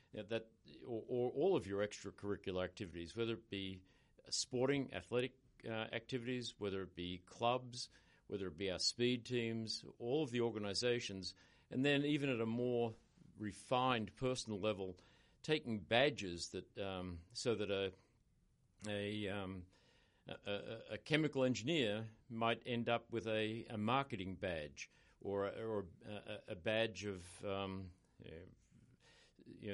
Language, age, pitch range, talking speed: English, 50-69, 100-125 Hz, 145 wpm